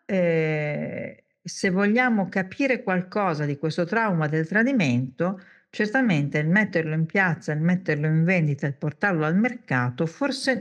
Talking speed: 135 wpm